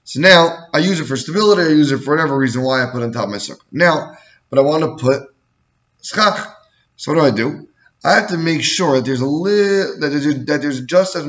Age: 20-39